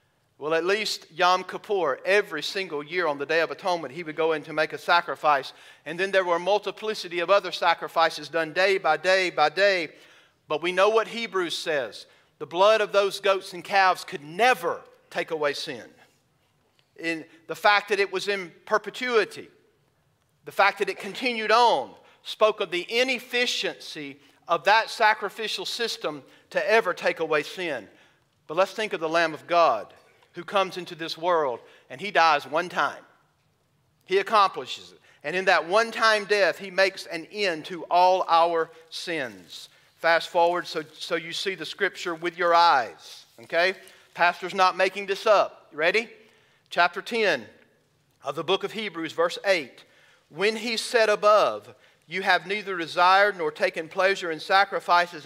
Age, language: 40-59, English